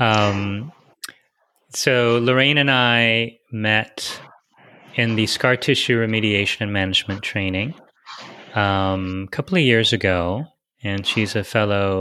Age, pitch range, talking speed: 30-49, 100-120 Hz, 120 wpm